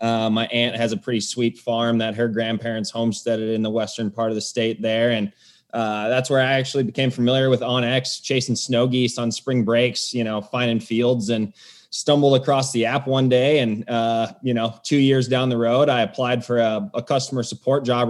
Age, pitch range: 20-39, 115-125 Hz